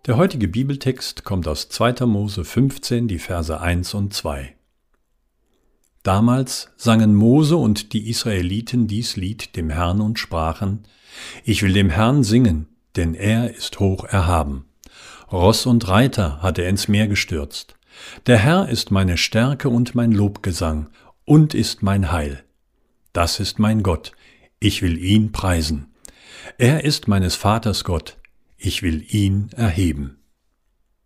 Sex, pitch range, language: male, 90-120 Hz, German